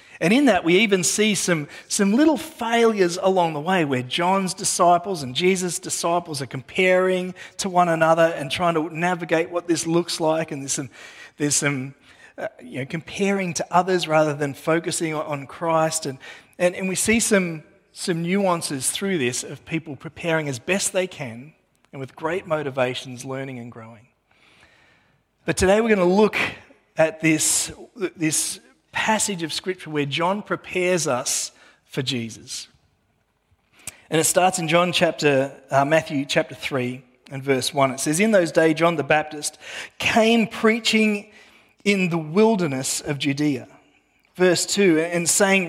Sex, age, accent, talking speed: male, 30-49, Australian, 160 wpm